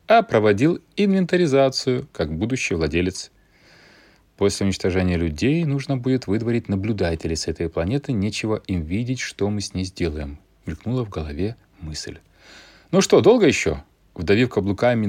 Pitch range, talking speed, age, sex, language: 90-130 Hz, 135 wpm, 30-49, male, Russian